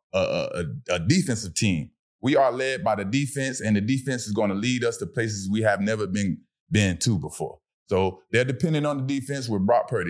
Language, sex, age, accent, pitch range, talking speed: English, male, 20-39, American, 110-165 Hz, 220 wpm